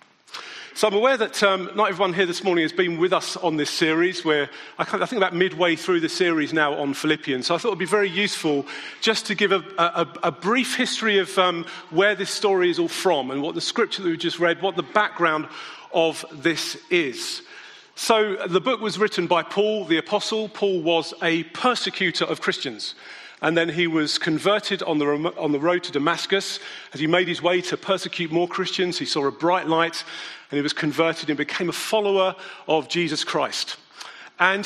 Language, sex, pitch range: English, male, 165-200 Hz